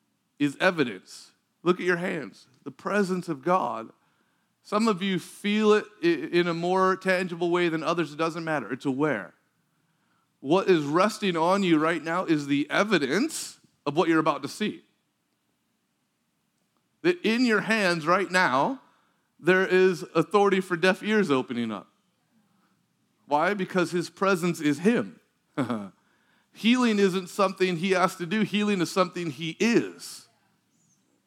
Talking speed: 145 wpm